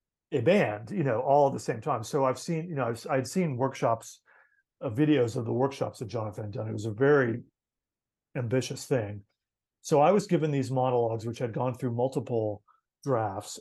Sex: male